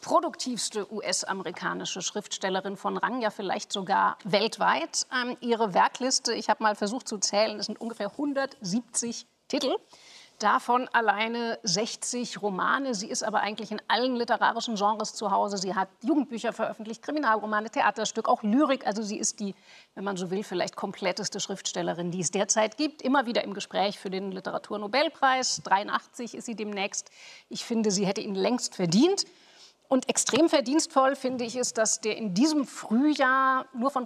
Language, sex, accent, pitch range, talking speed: German, female, German, 205-255 Hz, 160 wpm